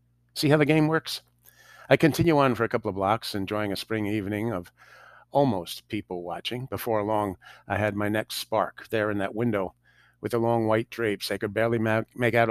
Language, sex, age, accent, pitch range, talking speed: English, male, 50-69, American, 95-115 Hz, 200 wpm